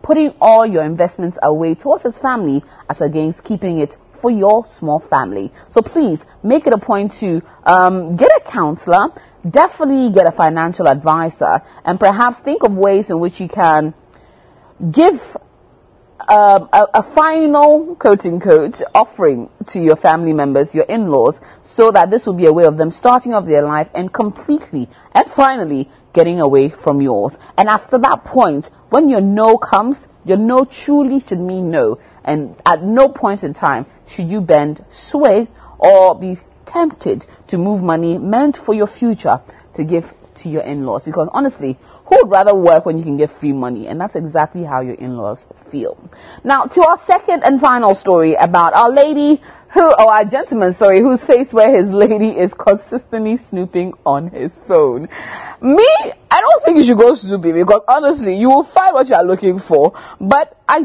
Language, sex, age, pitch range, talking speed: English, female, 30-49, 165-255 Hz, 175 wpm